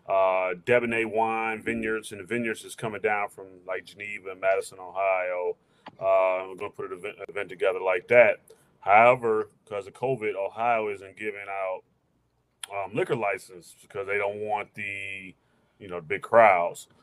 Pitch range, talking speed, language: 95-125 Hz, 160 wpm, English